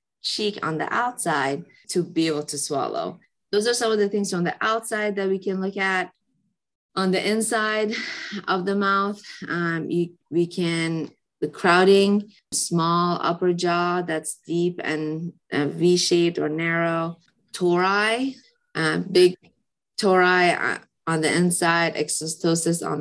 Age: 20-39